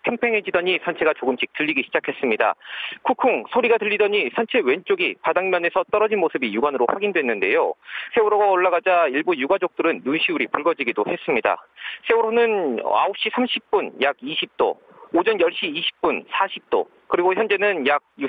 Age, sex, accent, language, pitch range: 40-59, male, native, Korean, 185-310 Hz